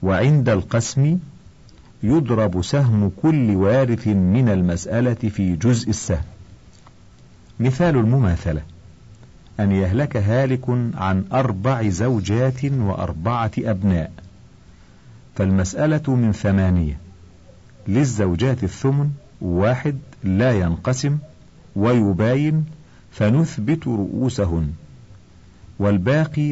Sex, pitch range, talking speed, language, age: male, 95-130 Hz, 75 wpm, Arabic, 50-69